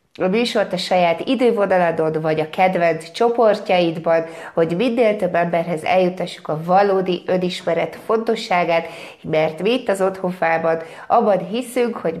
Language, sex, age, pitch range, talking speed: Hungarian, female, 30-49, 165-205 Hz, 130 wpm